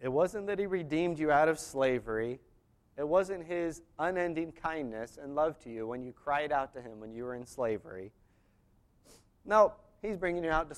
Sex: male